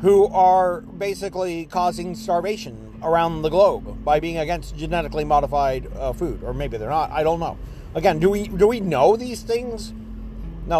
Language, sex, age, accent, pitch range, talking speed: English, male, 40-59, American, 140-200 Hz, 170 wpm